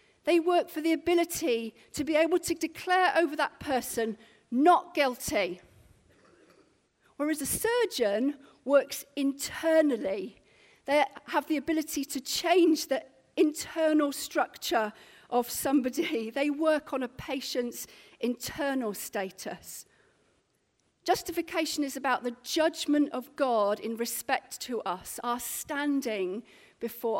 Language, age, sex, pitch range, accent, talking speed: English, 40-59, female, 225-310 Hz, British, 115 wpm